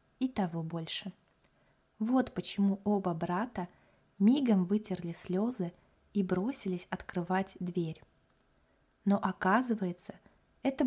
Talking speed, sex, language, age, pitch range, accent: 95 wpm, female, Russian, 20-39, 185-230 Hz, native